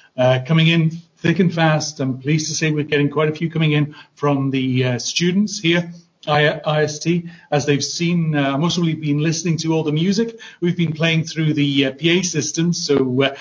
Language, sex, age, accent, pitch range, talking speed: English, male, 40-59, British, 140-165 Hz, 200 wpm